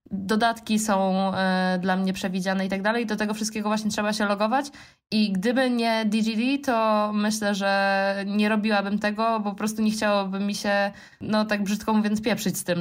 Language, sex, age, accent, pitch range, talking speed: Polish, female, 20-39, native, 190-220 Hz, 185 wpm